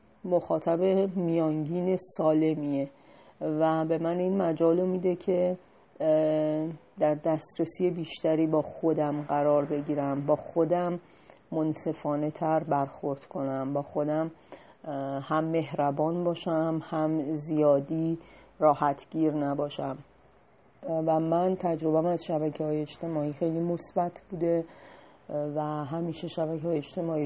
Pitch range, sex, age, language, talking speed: 155-175 Hz, female, 30-49, Persian, 105 wpm